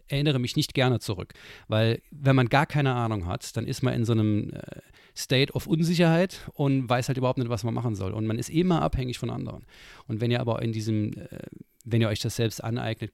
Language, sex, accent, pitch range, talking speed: German, male, German, 105-130 Hz, 225 wpm